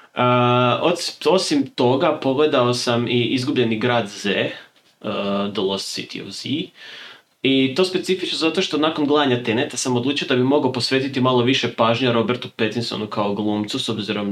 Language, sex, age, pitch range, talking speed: Croatian, male, 20-39, 105-130 Hz, 160 wpm